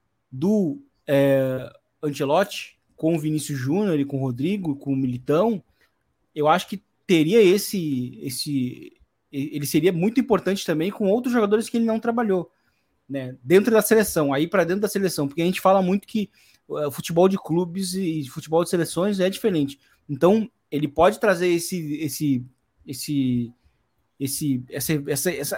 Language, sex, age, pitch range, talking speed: Portuguese, male, 20-39, 145-200 Hz, 160 wpm